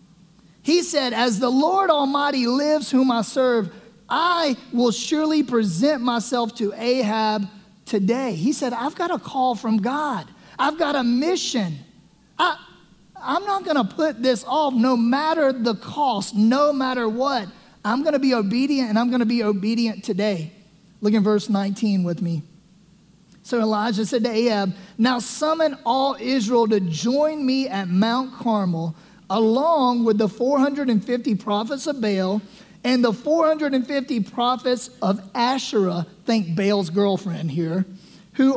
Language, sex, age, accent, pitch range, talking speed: English, male, 30-49, American, 195-260 Hz, 145 wpm